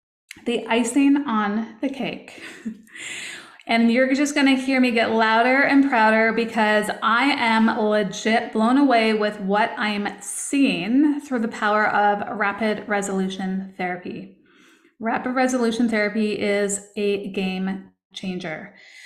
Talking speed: 125 wpm